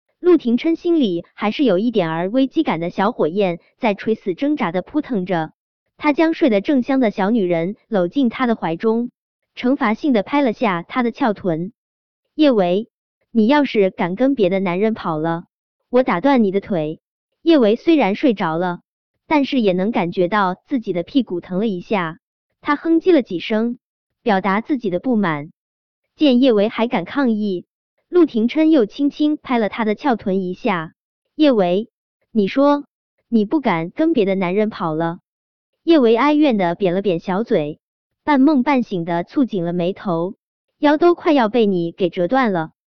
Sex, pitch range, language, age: male, 185-275 Hz, Chinese, 20-39